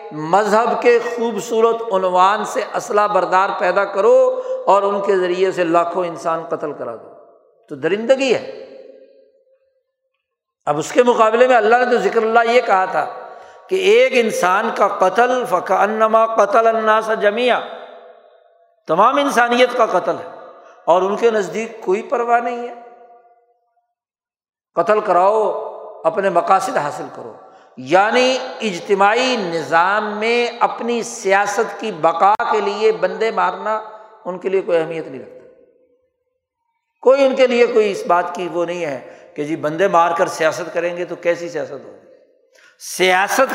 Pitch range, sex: 195-260 Hz, male